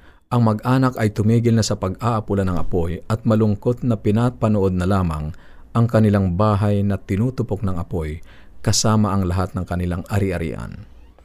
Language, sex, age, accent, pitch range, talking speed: Filipino, male, 50-69, native, 90-110 Hz, 150 wpm